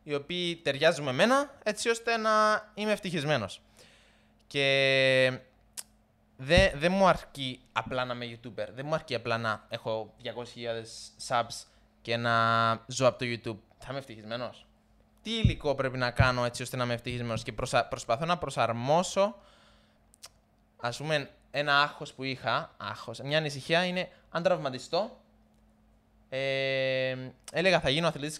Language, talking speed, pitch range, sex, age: Greek, 140 wpm, 120-170 Hz, male, 20-39